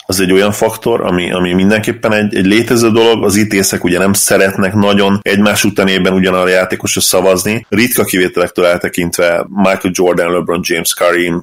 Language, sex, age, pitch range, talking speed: Hungarian, male, 30-49, 90-105 Hz, 165 wpm